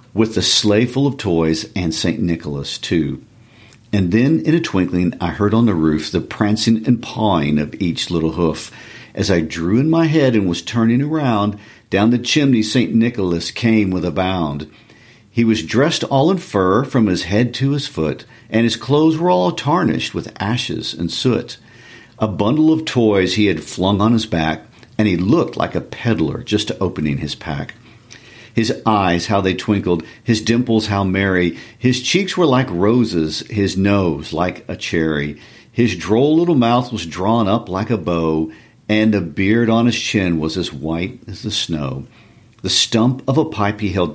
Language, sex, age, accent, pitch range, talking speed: English, male, 50-69, American, 85-115 Hz, 185 wpm